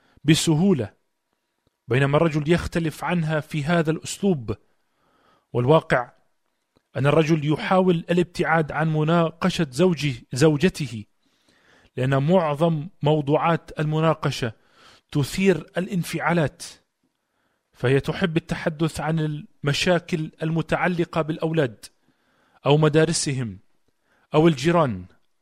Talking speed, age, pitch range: 80 wpm, 40-59, 140-170 Hz